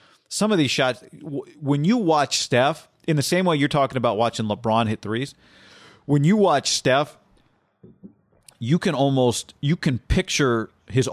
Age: 40-59